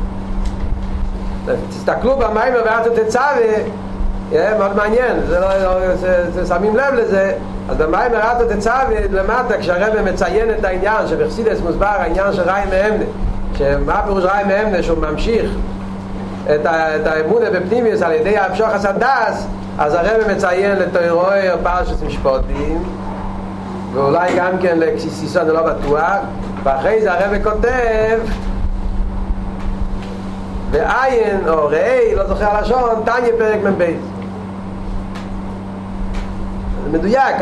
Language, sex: Hebrew, male